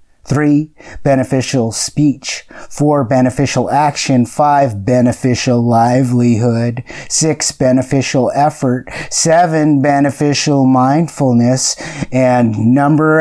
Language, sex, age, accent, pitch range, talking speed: English, male, 50-69, American, 115-140 Hz, 75 wpm